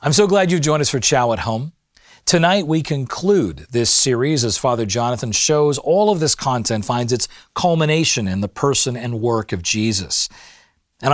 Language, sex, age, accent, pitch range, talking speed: English, male, 40-59, American, 110-150 Hz, 185 wpm